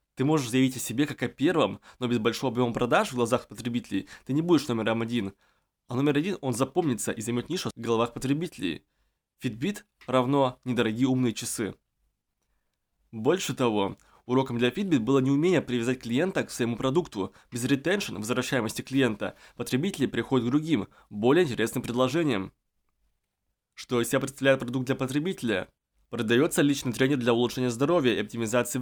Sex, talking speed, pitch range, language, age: male, 155 wpm, 105-135 Hz, Russian, 20-39